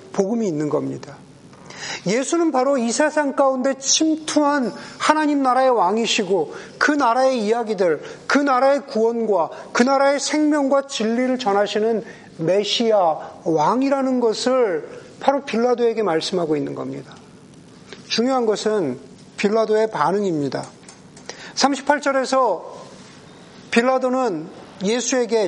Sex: male